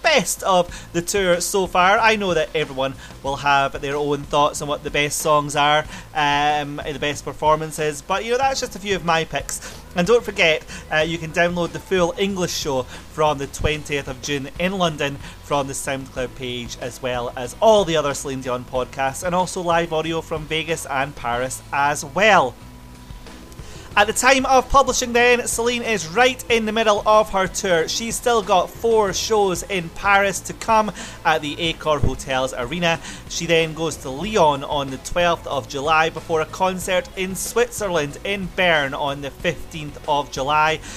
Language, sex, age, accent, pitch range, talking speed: English, male, 30-49, British, 140-190 Hz, 185 wpm